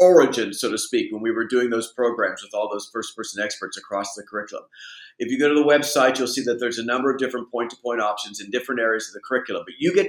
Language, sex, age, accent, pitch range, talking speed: English, male, 50-69, American, 125-150 Hz, 275 wpm